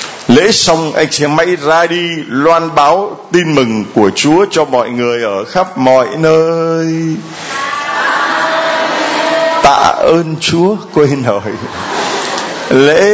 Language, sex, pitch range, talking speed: Vietnamese, male, 135-180 Hz, 120 wpm